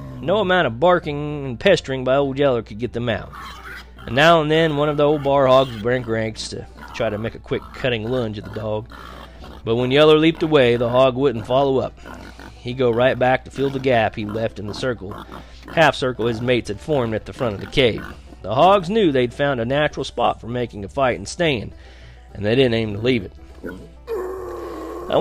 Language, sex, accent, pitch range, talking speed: English, male, American, 115-150 Hz, 220 wpm